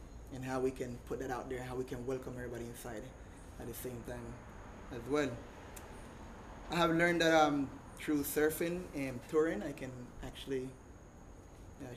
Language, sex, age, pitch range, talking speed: English, male, 20-39, 120-155 Hz, 165 wpm